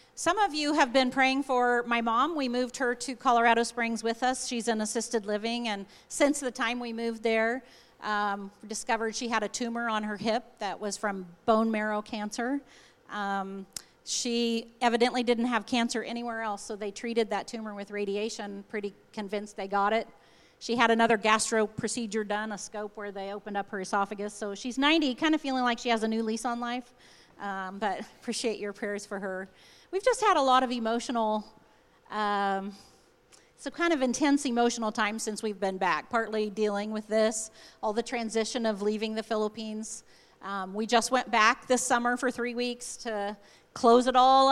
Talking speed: 190 wpm